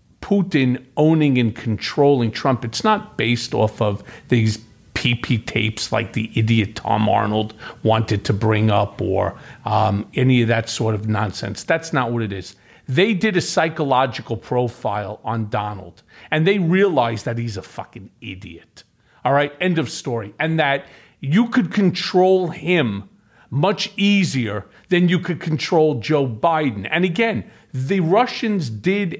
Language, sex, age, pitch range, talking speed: English, male, 50-69, 115-160 Hz, 150 wpm